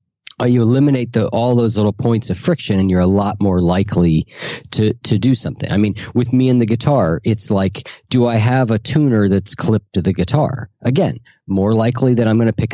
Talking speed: 215 wpm